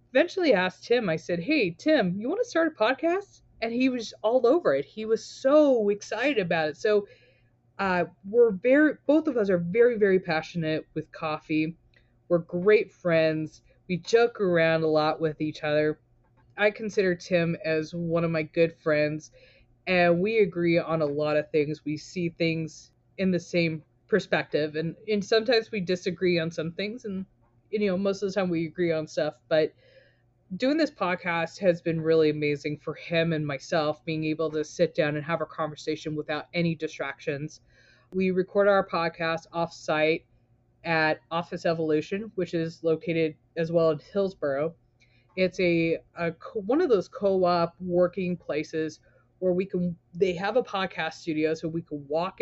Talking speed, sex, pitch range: 175 wpm, female, 155-195 Hz